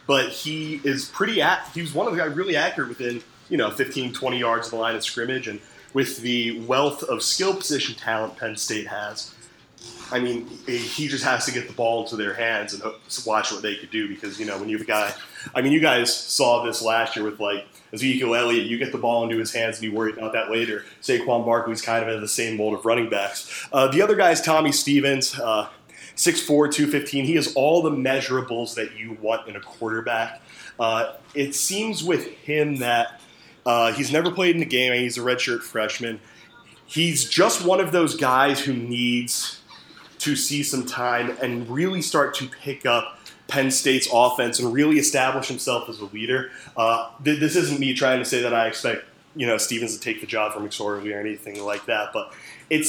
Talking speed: 215 wpm